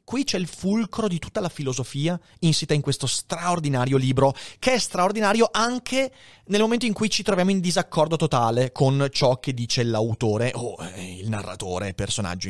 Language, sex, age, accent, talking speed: Italian, male, 30-49, native, 170 wpm